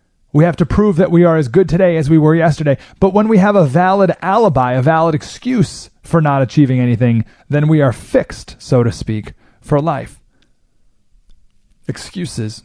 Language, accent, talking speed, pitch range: English, American, 180 wpm, 120-165 Hz